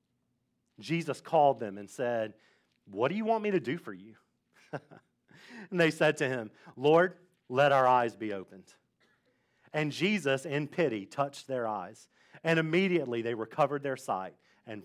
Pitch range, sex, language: 130-180 Hz, male, English